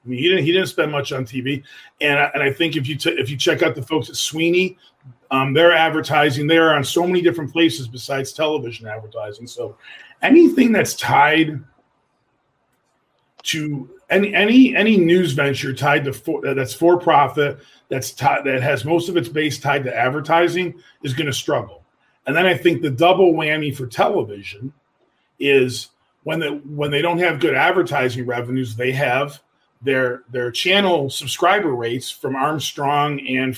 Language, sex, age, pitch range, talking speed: English, male, 40-59, 135-165 Hz, 180 wpm